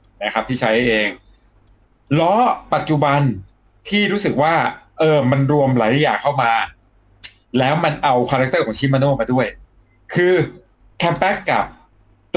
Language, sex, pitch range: Thai, male, 110-150 Hz